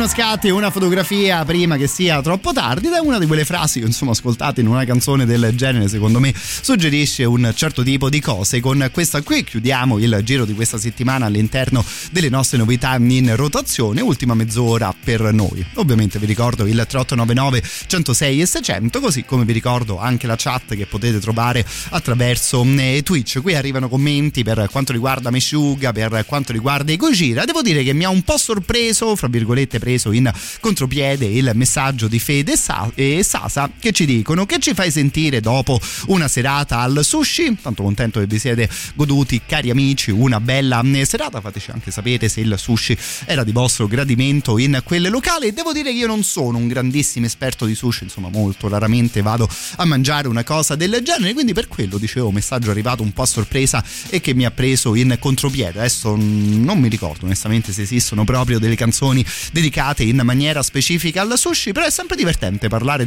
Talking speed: 185 wpm